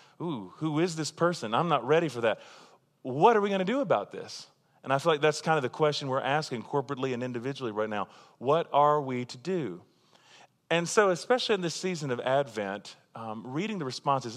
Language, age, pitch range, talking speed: English, 30-49, 120-155 Hz, 215 wpm